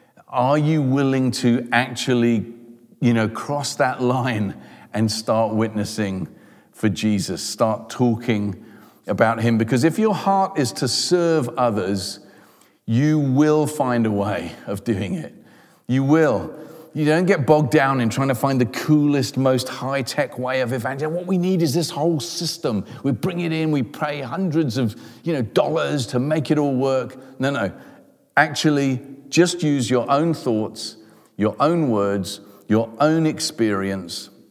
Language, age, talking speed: English, 40-59, 150 wpm